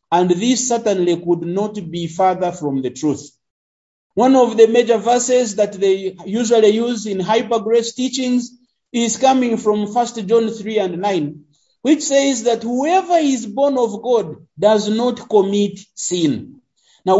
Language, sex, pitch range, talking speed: English, male, 200-265 Hz, 150 wpm